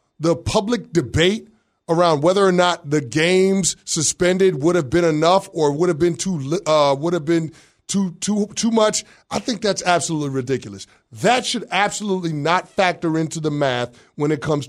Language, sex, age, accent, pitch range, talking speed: English, male, 30-49, American, 145-185 Hz, 175 wpm